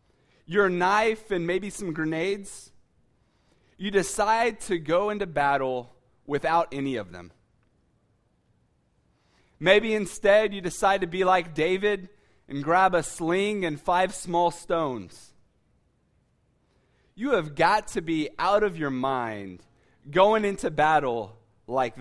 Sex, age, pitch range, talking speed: male, 20-39, 135-205 Hz, 125 wpm